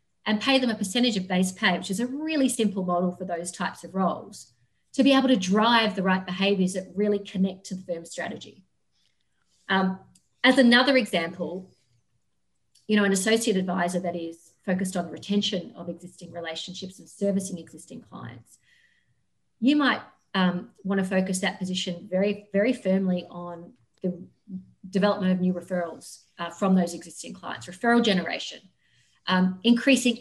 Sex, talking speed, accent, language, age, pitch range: female, 160 wpm, Australian, English, 40-59, 180-225 Hz